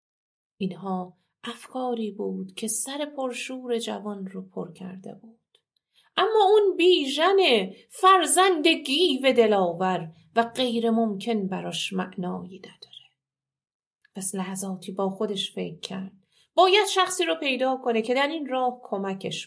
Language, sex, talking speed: Persian, female, 120 wpm